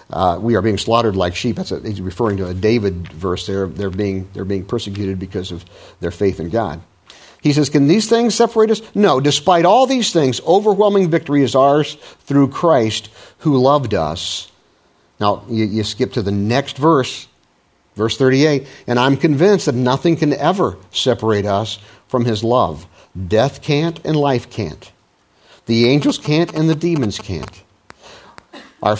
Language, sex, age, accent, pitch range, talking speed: English, male, 50-69, American, 100-145 Hz, 165 wpm